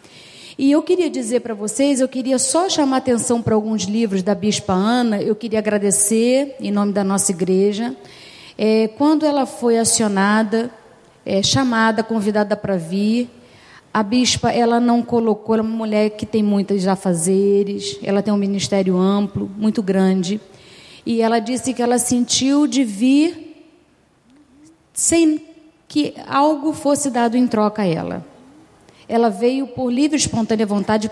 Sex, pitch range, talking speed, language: female, 205-265 Hz, 145 wpm, Portuguese